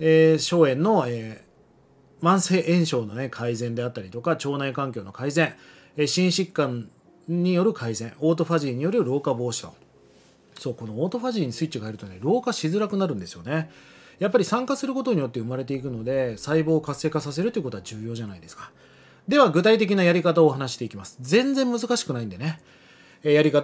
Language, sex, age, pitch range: Japanese, male, 30-49, 130-220 Hz